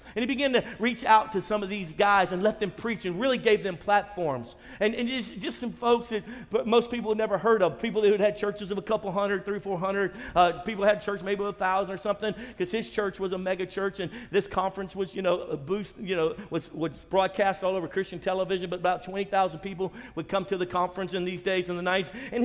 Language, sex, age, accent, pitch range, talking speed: English, male, 50-69, American, 185-225 Hz, 250 wpm